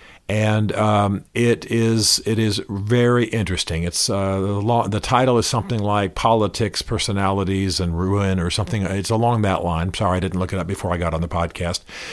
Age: 50-69